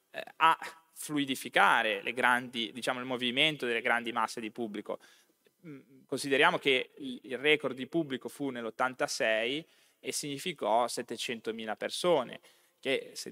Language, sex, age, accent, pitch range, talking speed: Italian, male, 20-39, native, 120-160 Hz, 105 wpm